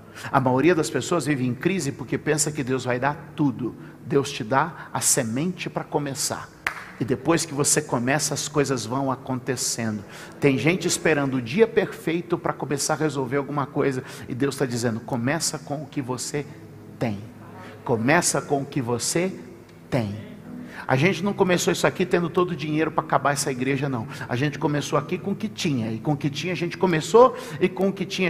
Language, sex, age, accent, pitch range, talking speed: Portuguese, male, 50-69, Brazilian, 145-210 Hz, 200 wpm